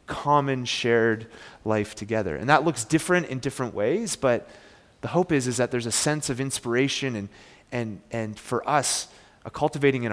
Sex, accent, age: male, American, 30-49